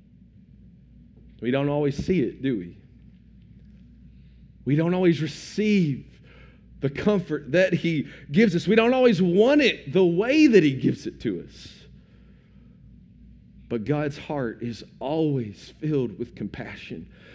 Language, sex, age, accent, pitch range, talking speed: English, male, 40-59, American, 145-200 Hz, 130 wpm